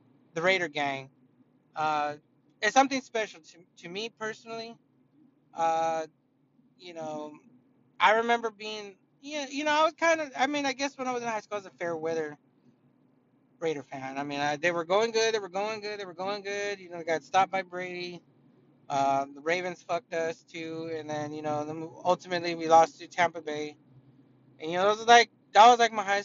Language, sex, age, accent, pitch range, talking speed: English, male, 20-39, American, 155-215 Hz, 210 wpm